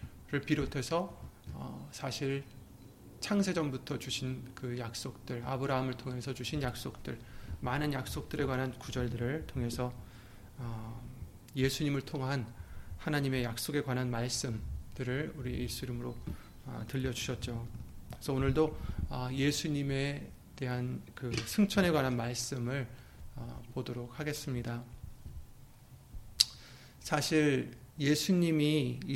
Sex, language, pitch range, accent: male, Korean, 115-145 Hz, native